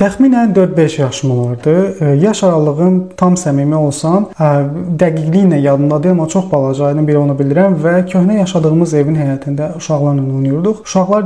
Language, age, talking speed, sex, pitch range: English, 30-49, 145 wpm, male, 145-180 Hz